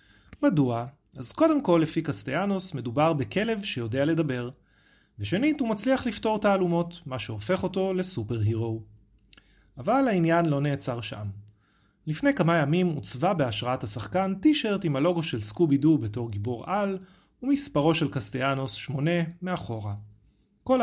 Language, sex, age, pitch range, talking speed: Hebrew, male, 30-49, 115-180 Hz, 130 wpm